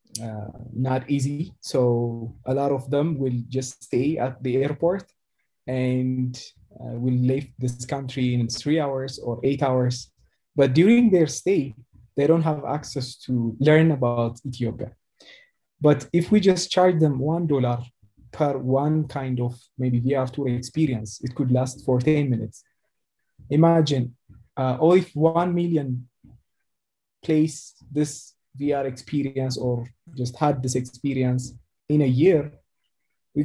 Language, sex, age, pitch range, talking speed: English, male, 20-39, 125-150 Hz, 145 wpm